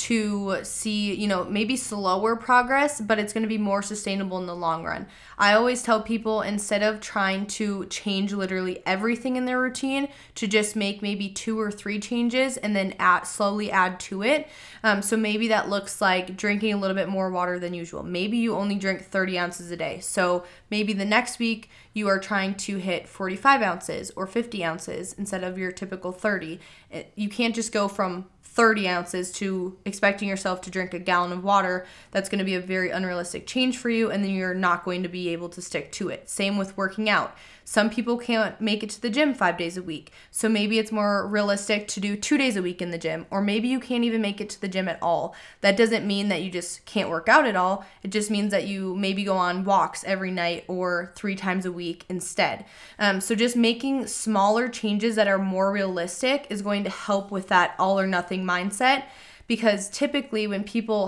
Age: 20-39